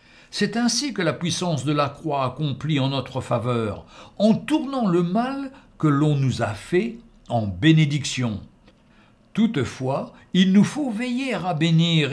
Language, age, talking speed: French, 60-79, 150 wpm